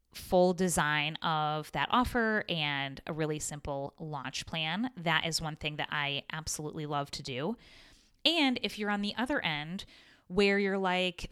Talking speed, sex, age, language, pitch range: 165 wpm, female, 20-39, English, 160-210 Hz